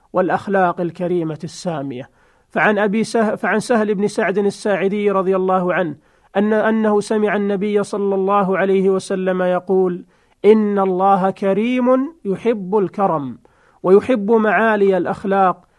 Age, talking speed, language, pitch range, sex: 40-59, 120 wpm, Arabic, 180-210 Hz, male